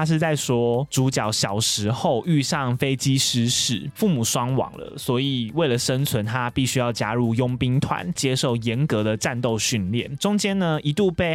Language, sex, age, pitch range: Chinese, male, 20-39, 120-150 Hz